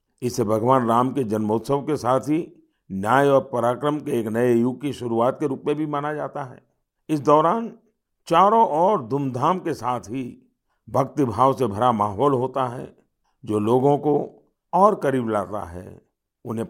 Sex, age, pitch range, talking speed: male, 50-69, 120-160 Hz, 170 wpm